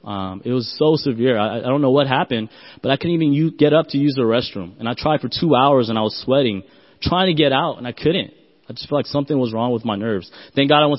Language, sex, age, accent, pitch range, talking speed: English, male, 20-39, American, 120-160 Hz, 290 wpm